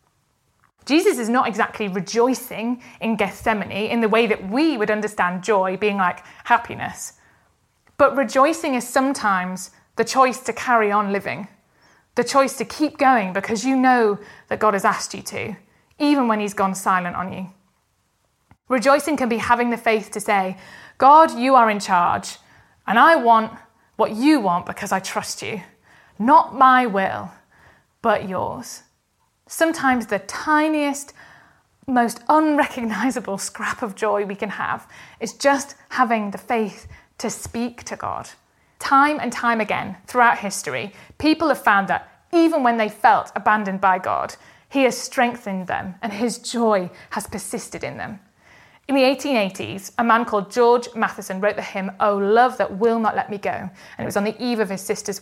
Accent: British